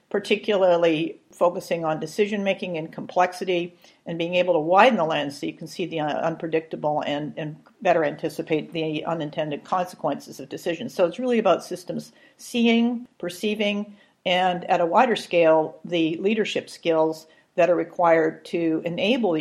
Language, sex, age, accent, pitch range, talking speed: English, female, 50-69, American, 160-190 Hz, 150 wpm